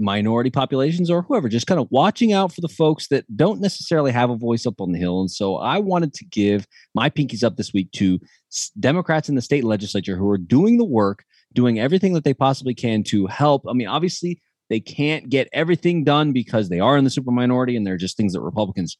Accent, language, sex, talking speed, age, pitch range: American, English, male, 230 wpm, 30-49, 115-170 Hz